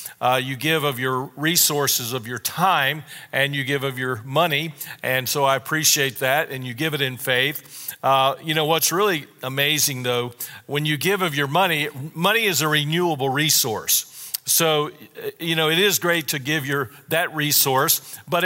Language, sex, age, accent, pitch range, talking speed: English, male, 50-69, American, 135-160 Hz, 180 wpm